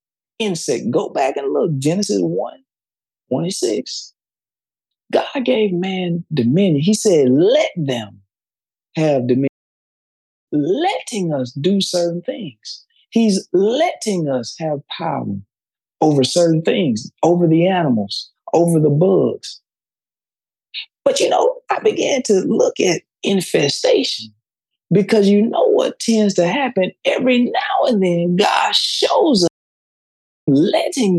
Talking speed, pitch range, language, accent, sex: 115 wpm, 145-225 Hz, English, American, male